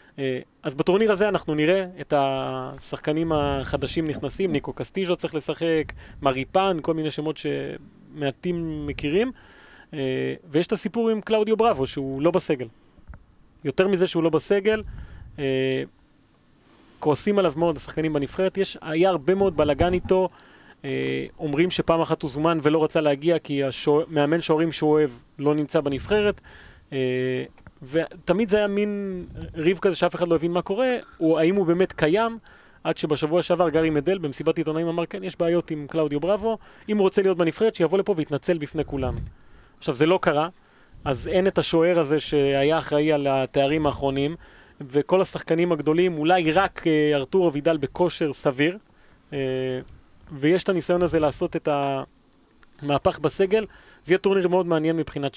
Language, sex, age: Hebrew, male, 30-49